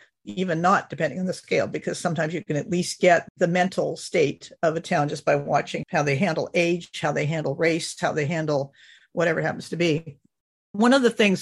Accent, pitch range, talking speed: American, 160-200 Hz, 220 wpm